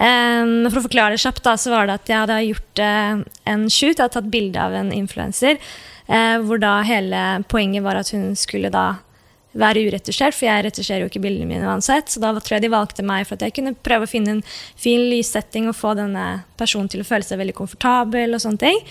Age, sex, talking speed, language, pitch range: 20-39, female, 220 wpm, English, 210-255 Hz